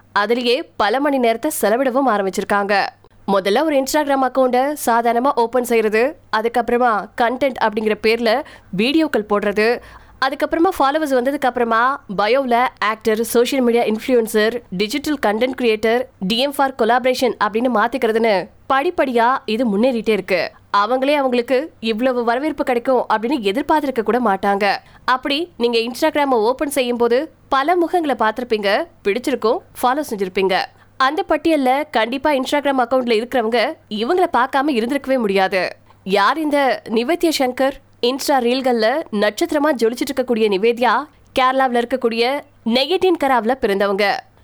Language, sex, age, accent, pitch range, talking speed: Tamil, female, 20-39, native, 225-280 Hz, 60 wpm